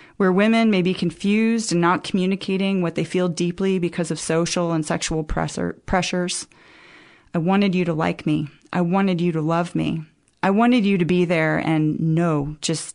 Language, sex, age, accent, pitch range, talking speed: English, female, 30-49, American, 160-185 Hz, 185 wpm